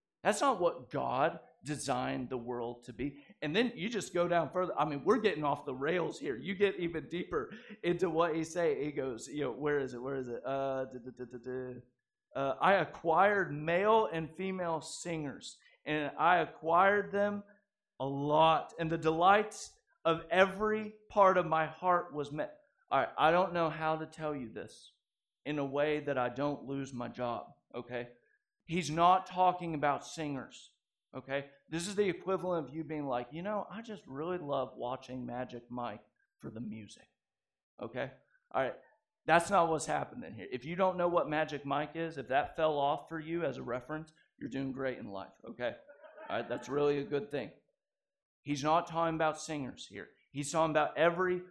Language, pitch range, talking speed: English, 140-185 Hz, 190 wpm